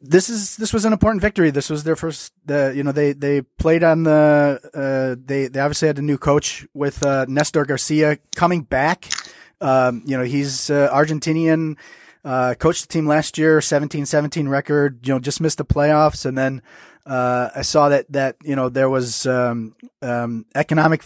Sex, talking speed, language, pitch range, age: male, 190 wpm, English, 135-160 Hz, 30-49